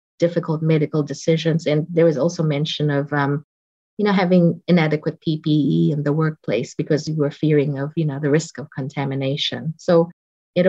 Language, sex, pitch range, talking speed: English, female, 145-170 Hz, 175 wpm